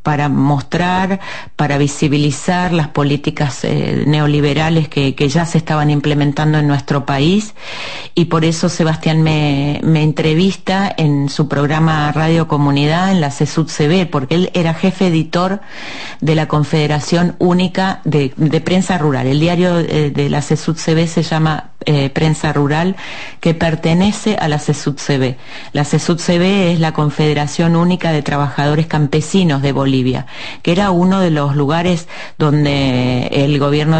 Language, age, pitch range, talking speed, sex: Spanish, 40-59, 145-175 Hz, 150 wpm, female